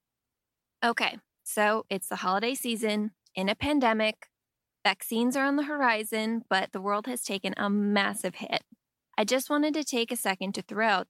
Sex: female